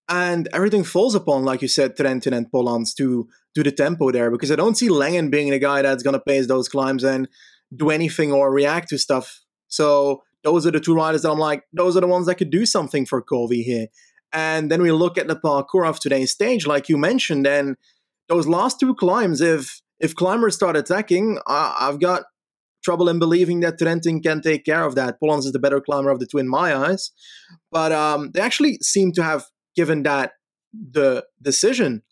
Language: English